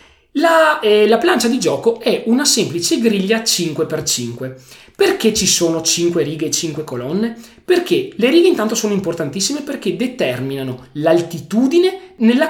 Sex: male